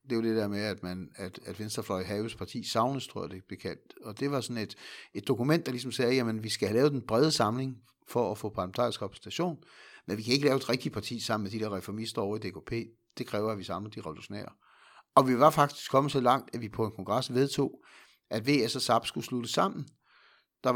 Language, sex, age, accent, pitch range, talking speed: Danish, male, 60-79, native, 100-125 Hz, 240 wpm